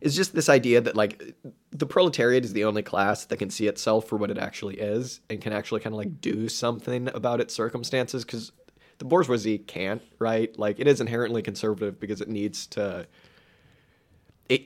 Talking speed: 190 wpm